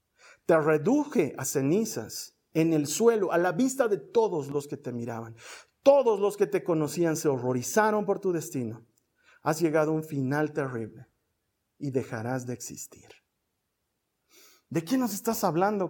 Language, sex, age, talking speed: Spanish, male, 50-69, 155 wpm